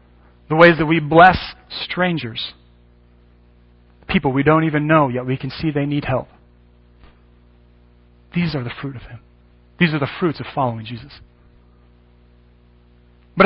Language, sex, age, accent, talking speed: English, male, 40-59, American, 145 wpm